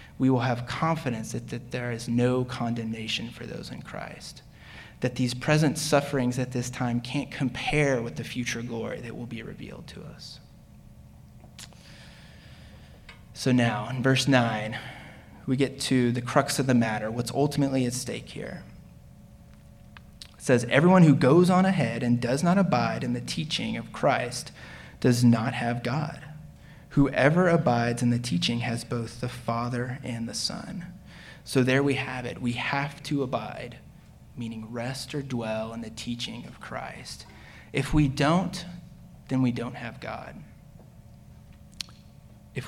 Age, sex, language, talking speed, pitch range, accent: 20-39, male, English, 155 wpm, 120-140 Hz, American